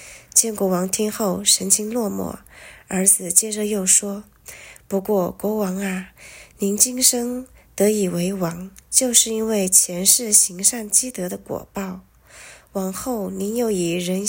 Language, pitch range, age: Chinese, 185-230 Hz, 20-39